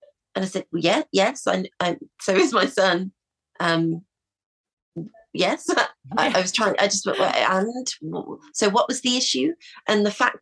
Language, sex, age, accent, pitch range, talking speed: English, female, 30-49, British, 175-225 Hz, 175 wpm